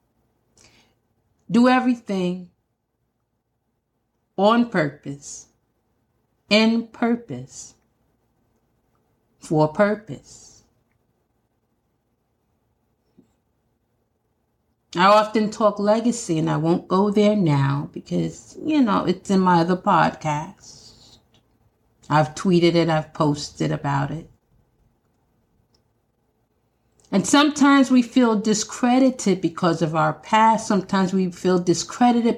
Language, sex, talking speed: English, female, 85 wpm